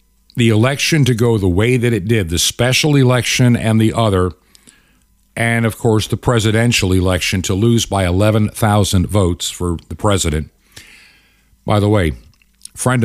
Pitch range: 95-125 Hz